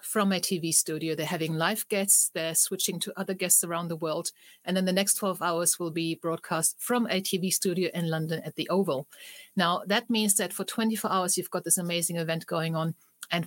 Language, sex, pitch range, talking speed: English, female, 165-200 Hz, 220 wpm